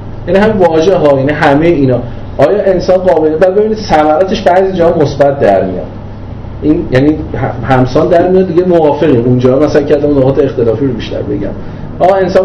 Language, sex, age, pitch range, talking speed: Persian, male, 30-49, 110-155 Hz, 160 wpm